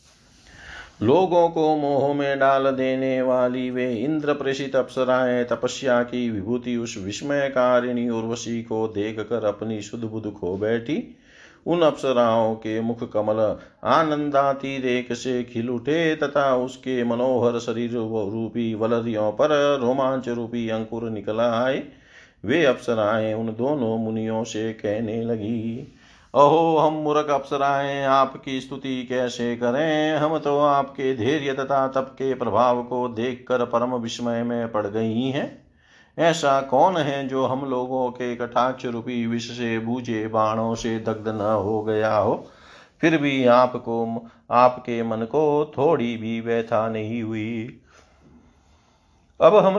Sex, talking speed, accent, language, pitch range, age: male, 135 wpm, native, Hindi, 115-140 Hz, 50-69